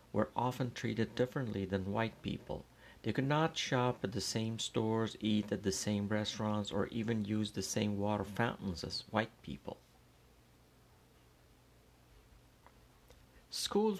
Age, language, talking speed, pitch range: 50-69, Persian, 135 wpm, 100-125 Hz